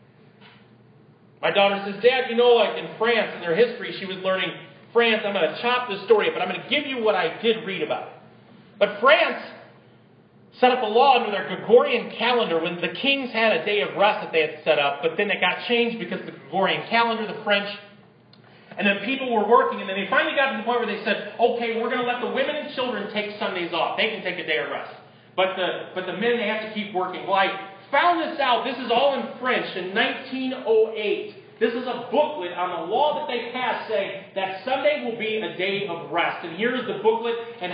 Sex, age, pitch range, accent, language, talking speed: male, 40-59, 195-250 Hz, American, English, 240 wpm